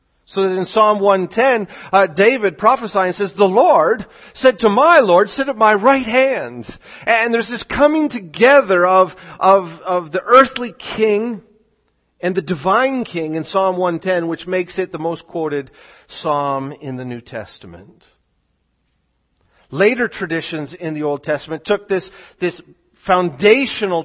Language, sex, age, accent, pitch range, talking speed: English, male, 40-59, American, 150-195 Hz, 145 wpm